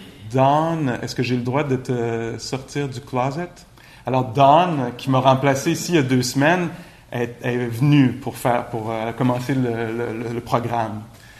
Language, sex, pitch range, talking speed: English, male, 115-135 Hz, 185 wpm